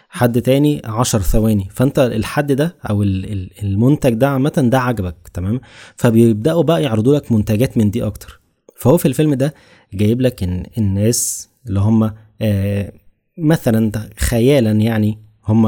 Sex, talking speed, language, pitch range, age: male, 140 wpm, Arabic, 110-130 Hz, 20-39